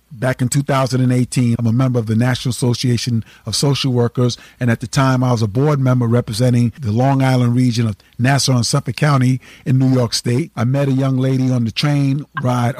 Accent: American